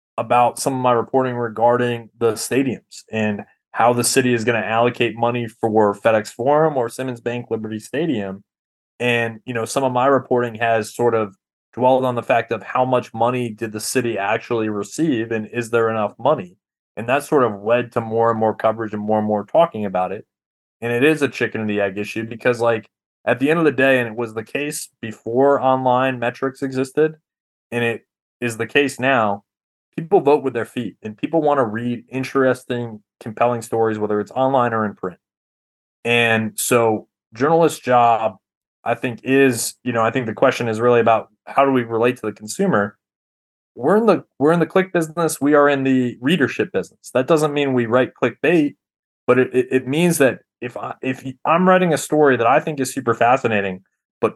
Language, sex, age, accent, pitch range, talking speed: English, male, 20-39, American, 110-135 Hz, 205 wpm